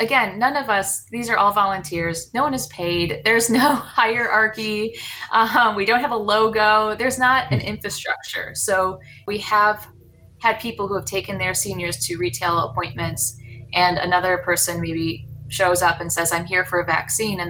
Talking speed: 180 wpm